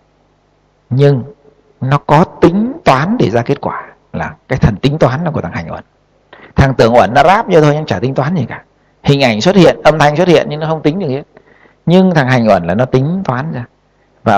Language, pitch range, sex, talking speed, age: Vietnamese, 115-155 Hz, male, 235 wpm, 60-79